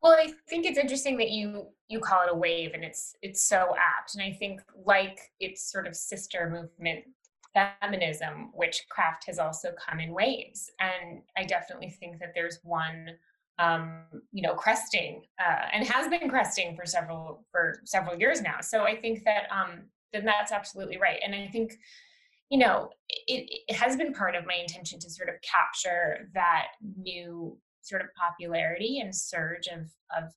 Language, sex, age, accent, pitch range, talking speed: English, female, 20-39, American, 170-210 Hz, 180 wpm